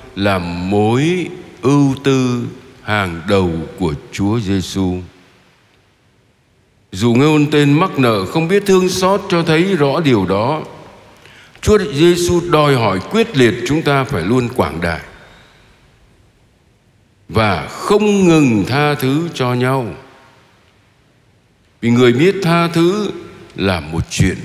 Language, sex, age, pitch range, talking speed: Vietnamese, male, 60-79, 105-150 Hz, 125 wpm